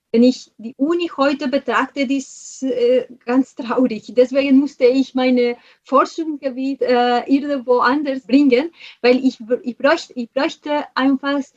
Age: 30-49